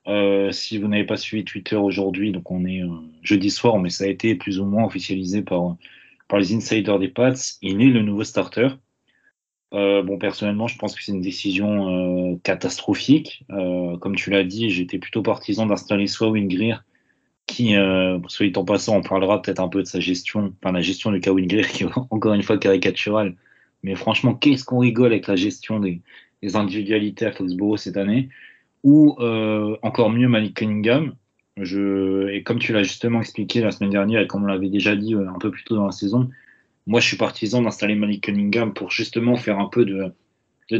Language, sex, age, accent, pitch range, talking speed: French, male, 30-49, French, 95-110 Hz, 205 wpm